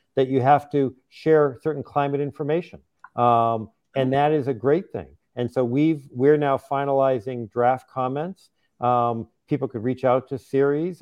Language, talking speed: English, 165 wpm